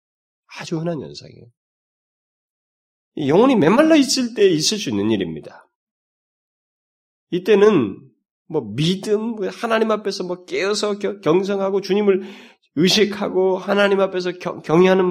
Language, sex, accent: Korean, male, native